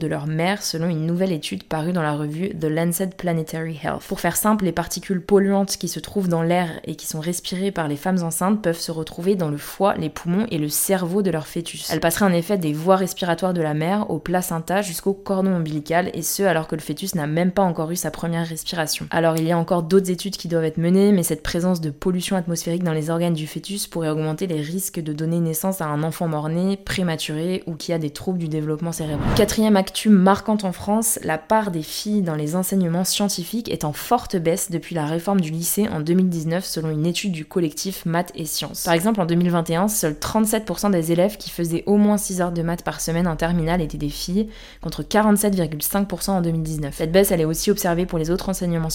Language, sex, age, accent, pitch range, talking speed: French, female, 20-39, French, 160-190 Hz, 230 wpm